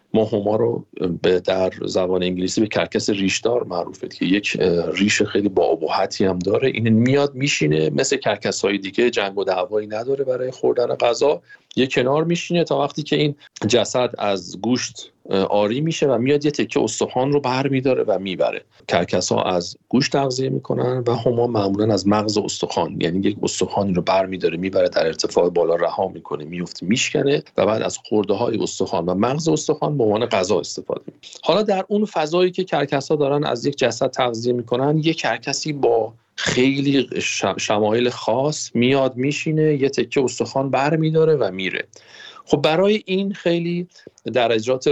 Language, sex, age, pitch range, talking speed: Persian, male, 50-69, 105-150 Hz, 165 wpm